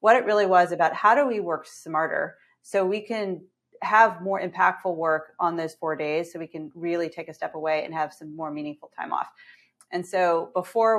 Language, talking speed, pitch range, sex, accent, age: English, 215 wpm, 160-190 Hz, female, American, 30-49